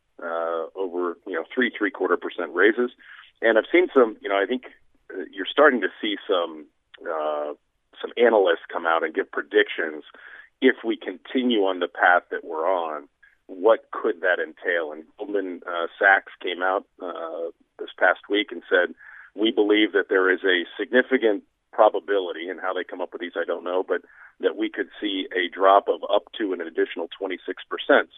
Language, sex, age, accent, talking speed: English, male, 40-59, American, 180 wpm